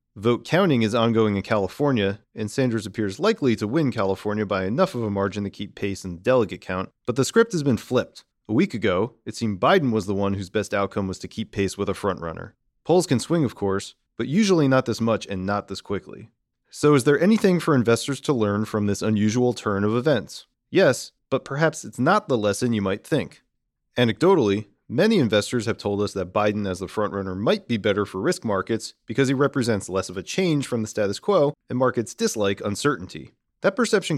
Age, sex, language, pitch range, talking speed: 30-49, male, English, 100-135 Hz, 215 wpm